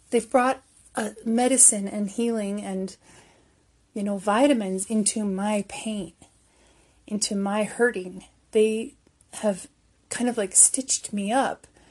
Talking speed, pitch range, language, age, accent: 120 wpm, 200-230 Hz, English, 30-49, American